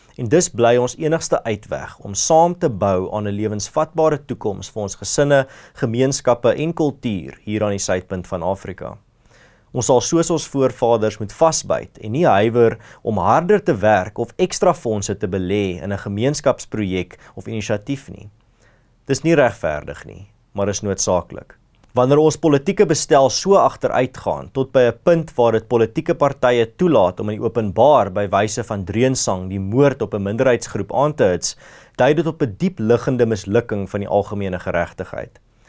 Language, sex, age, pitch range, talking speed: English, male, 30-49, 100-140 Hz, 160 wpm